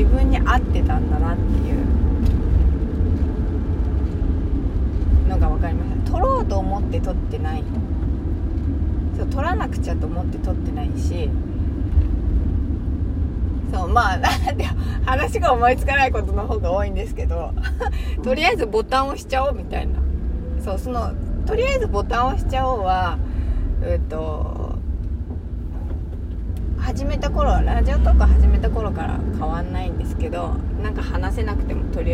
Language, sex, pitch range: Japanese, female, 70-85 Hz